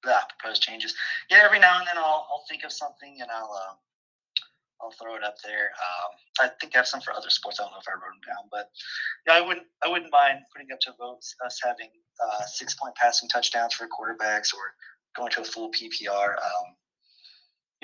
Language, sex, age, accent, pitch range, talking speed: English, male, 30-49, American, 115-165 Hz, 220 wpm